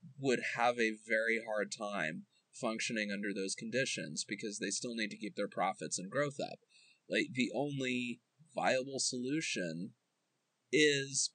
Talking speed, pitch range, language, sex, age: 145 wpm, 110-135 Hz, English, male, 20-39